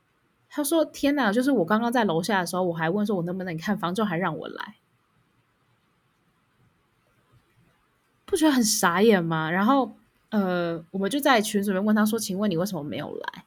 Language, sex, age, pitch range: Chinese, female, 20-39, 180-230 Hz